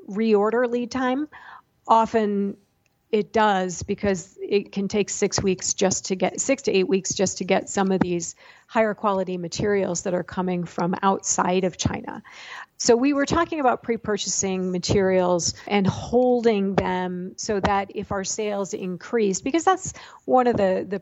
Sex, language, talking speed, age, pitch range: female, English, 165 wpm, 40-59, 190-225 Hz